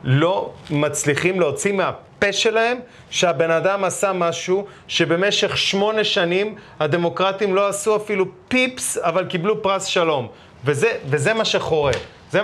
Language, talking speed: Hebrew, 125 wpm